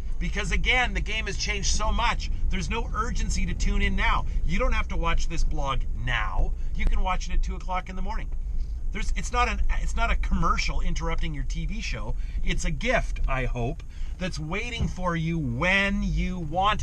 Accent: American